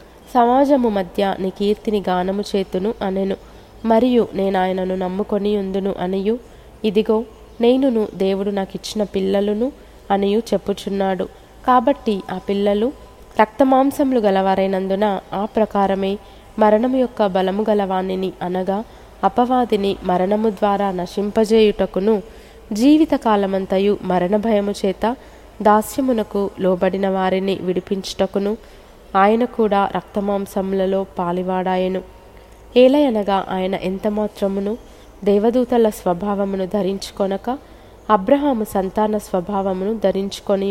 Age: 20-39